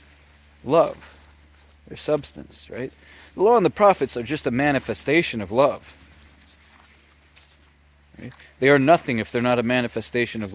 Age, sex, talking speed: 30-49, male, 135 wpm